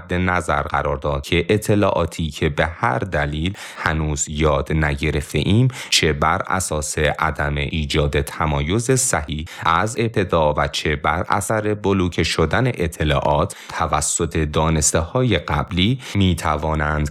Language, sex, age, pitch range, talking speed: Persian, male, 30-49, 75-90 Hz, 120 wpm